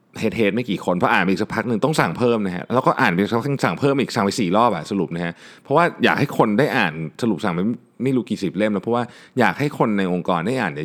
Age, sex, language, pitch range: 20-39, male, Thai, 85-115 Hz